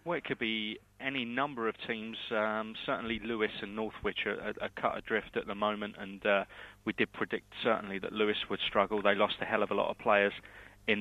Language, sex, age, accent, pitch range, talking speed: English, male, 30-49, British, 100-115 Hz, 225 wpm